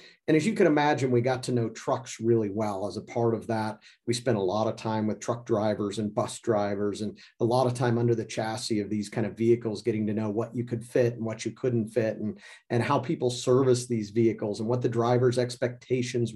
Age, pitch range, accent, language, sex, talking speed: 40-59, 110-125 Hz, American, English, male, 240 wpm